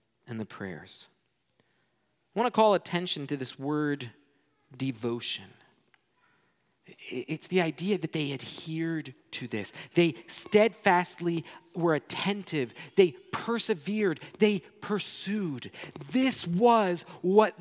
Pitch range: 165-265 Hz